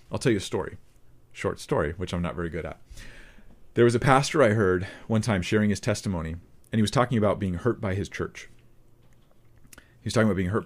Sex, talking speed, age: male, 225 wpm, 40-59